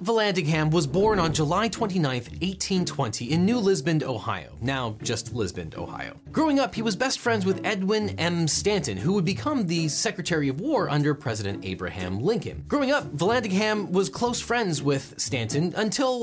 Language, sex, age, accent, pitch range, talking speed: English, male, 30-49, American, 135-210 Hz, 165 wpm